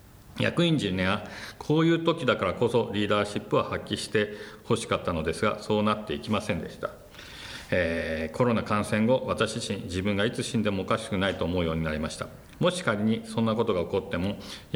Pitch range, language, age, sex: 85-115 Hz, Japanese, 50-69, male